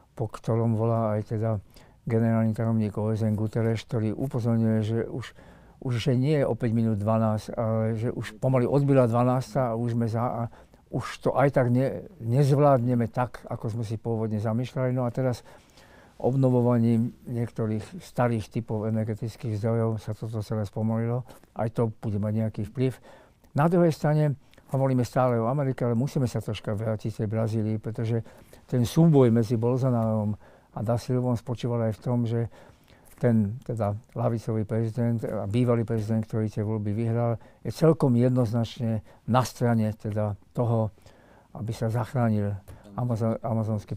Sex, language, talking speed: male, Slovak, 150 wpm